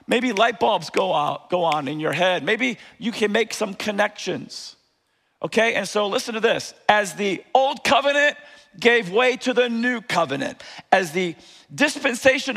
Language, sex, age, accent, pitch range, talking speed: English, male, 50-69, American, 205-260 Hz, 160 wpm